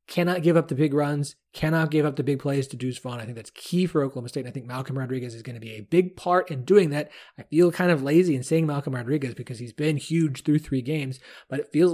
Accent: American